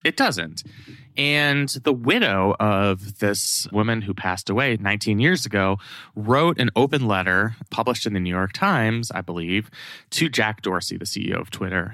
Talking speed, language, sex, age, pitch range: 165 wpm, English, male, 20-39, 90-120 Hz